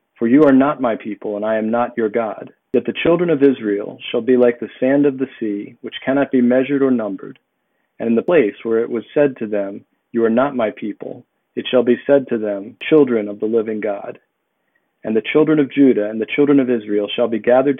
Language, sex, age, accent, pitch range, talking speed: English, male, 40-59, American, 115-135 Hz, 235 wpm